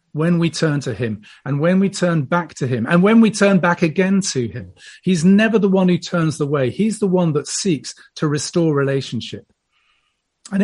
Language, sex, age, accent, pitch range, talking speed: English, male, 40-59, British, 135-190 Hz, 210 wpm